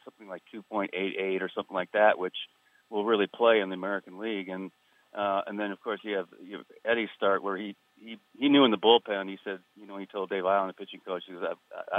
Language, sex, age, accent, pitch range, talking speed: English, male, 40-59, American, 95-105 Hz, 245 wpm